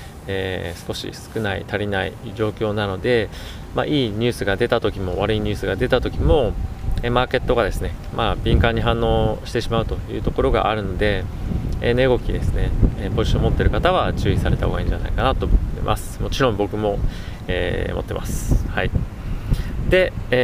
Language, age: Japanese, 20-39